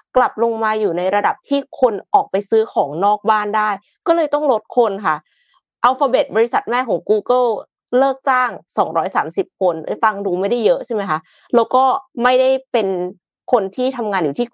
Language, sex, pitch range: Thai, female, 190-255 Hz